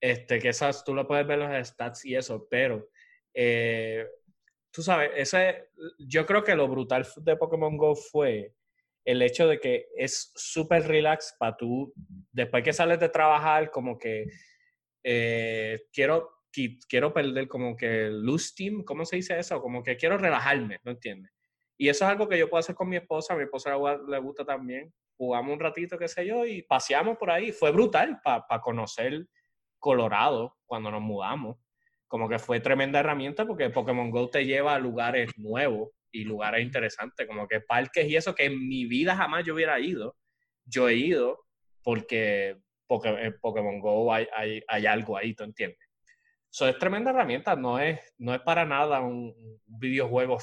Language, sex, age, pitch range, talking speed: English, male, 20-39, 120-190 Hz, 180 wpm